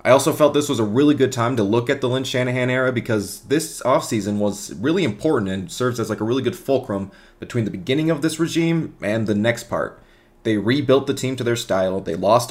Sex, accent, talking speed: male, American, 235 wpm